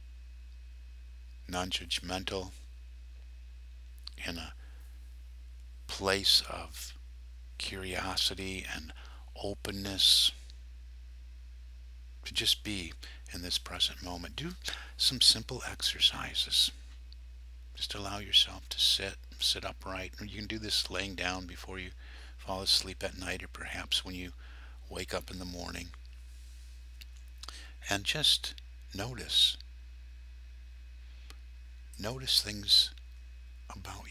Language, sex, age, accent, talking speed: English, male, 50-69, American, 95 wpm